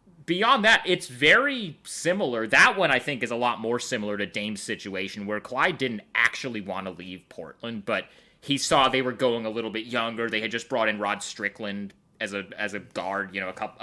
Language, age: English, 30-49